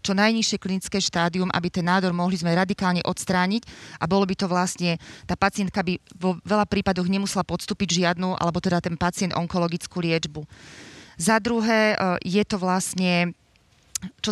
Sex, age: female, 30-49